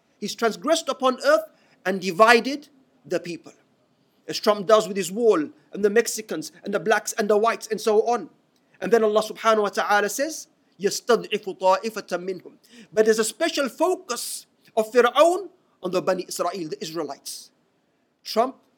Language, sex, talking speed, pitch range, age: English, male, 150 wpm, 195-250 Hz, 40-59